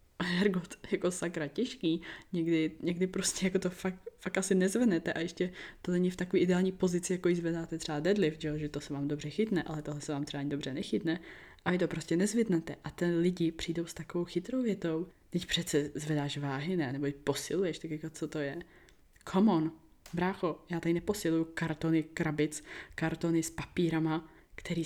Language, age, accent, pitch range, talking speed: Czech, 20-39, native, 160-185 Hz, 195 wpm